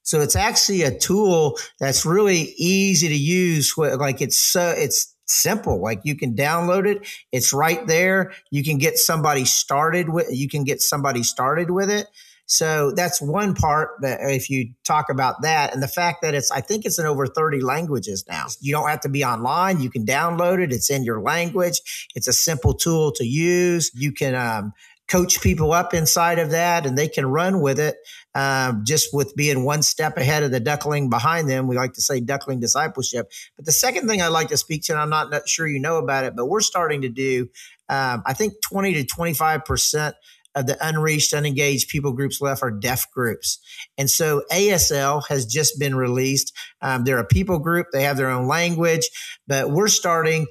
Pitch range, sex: 135-165 Hz, male